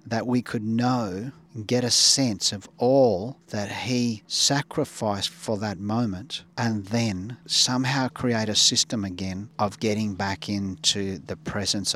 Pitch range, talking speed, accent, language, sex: 100-115 Hz, 145 wpm, Australian, English, male